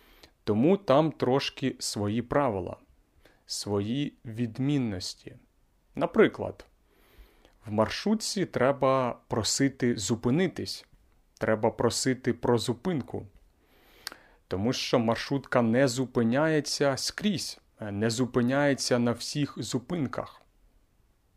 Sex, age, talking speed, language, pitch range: male, 30-49, 80 wpm, Ukrainian, 110-145 Hz